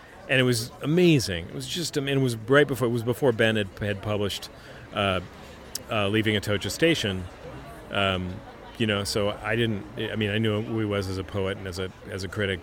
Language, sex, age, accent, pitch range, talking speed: English, male, 40-59, American, 100-120 Hz, 230 wpm